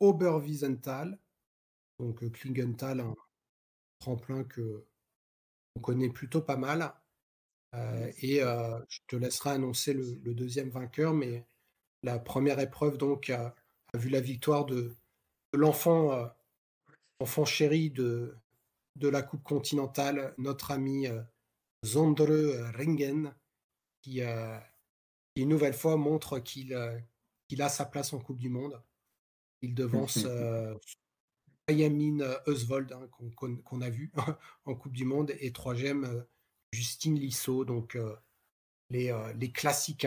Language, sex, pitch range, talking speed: French, male, 120-140 Hz, 135 wpm